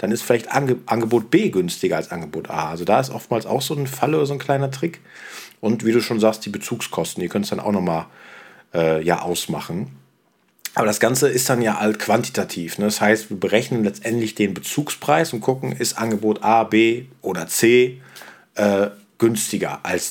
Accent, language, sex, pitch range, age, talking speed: German, German, male, 100-120 Hz, 40-59, 195 wpm